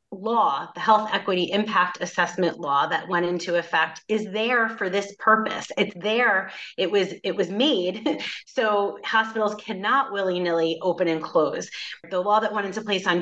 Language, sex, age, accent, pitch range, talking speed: English, female, 30-49, American, 175-210 Hz, 175 wpm